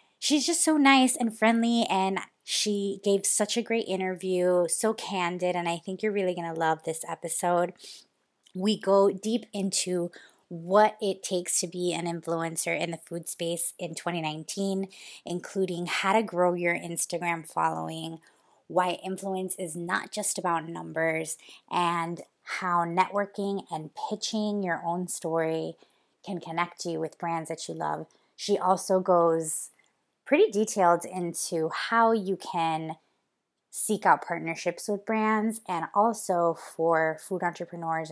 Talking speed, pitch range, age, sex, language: 145 wpm, 165-205 Hz, 20-39, female, English